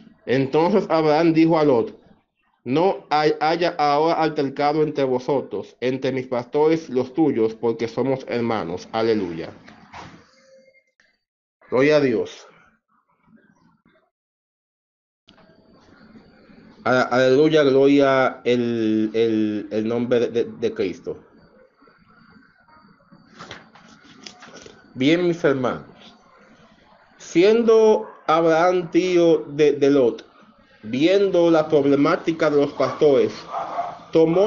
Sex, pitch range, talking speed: male, 140-180 Hz, 80 wpm